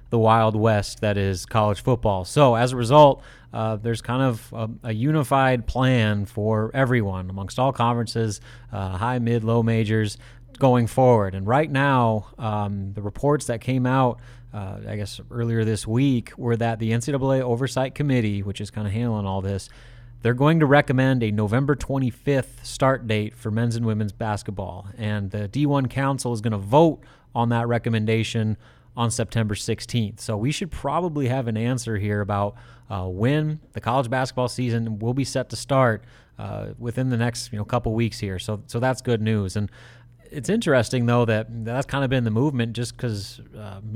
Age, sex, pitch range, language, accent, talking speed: 30-49, male, 110-130 Hz, English, American, 185 wpm